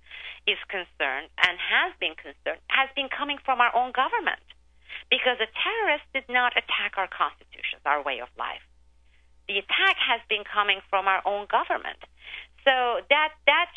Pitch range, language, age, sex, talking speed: 195-260 Hz, English, 40-59, female, 160 wpm